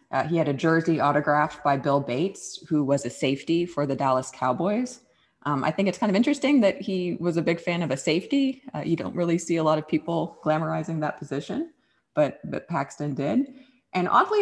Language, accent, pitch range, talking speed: English, American, 150-210 Hz, 210 wpm